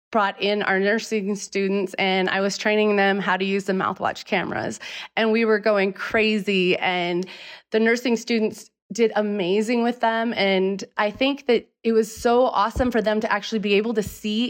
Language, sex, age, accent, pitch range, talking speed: English, female, 20-39, American, 195-225 Hz, 185 wpm